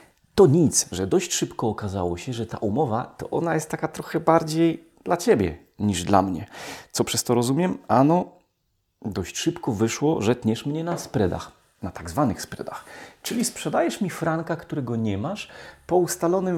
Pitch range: 100-150 Hz